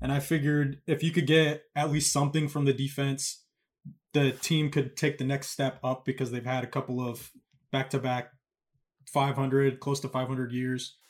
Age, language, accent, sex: 20-39, English, American, male